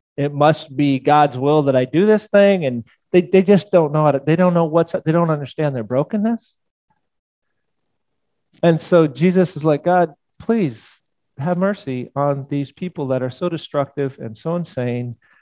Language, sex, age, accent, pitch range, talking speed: English, male, 40-59, American, 130-175 Hz, 180 wpm